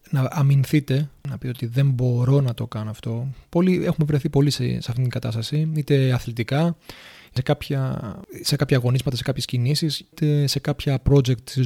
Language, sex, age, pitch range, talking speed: Greek, male, 30-49, 125-150 Hz, 180 wpm